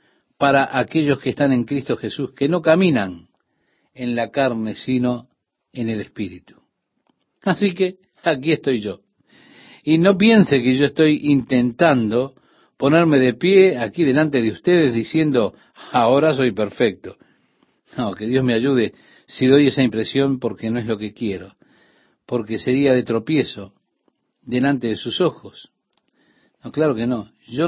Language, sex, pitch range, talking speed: Spanish, male, 115-150 Hz, 145 wpm